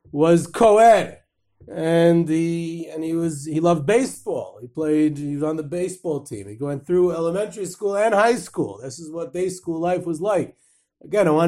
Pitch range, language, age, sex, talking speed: 150-180 Hz, English, 30-49, male, 195 wpm